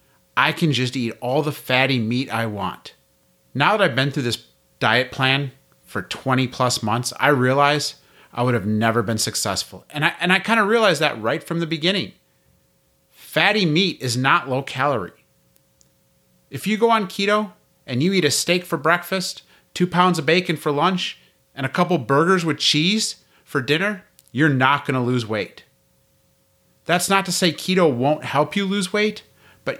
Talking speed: 185 wpm